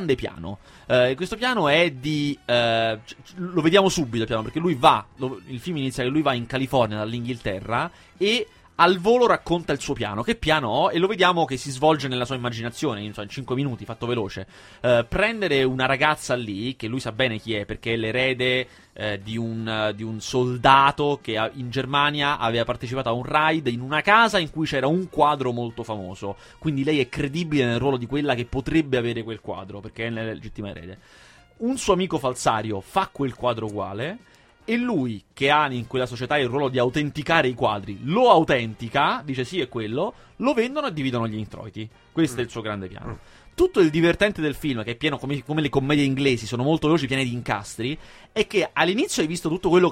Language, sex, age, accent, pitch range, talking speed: Italian, male, 30-49, native, 115-155 Hz, 210 wpm